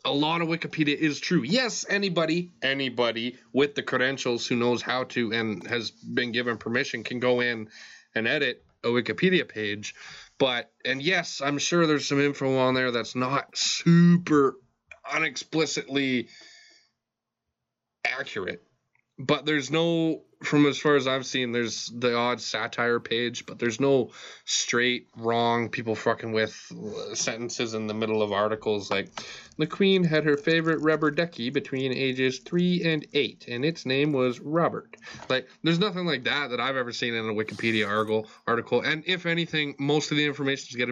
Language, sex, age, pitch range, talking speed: English, male, 20-39, 115-150 Hz, 165 wpm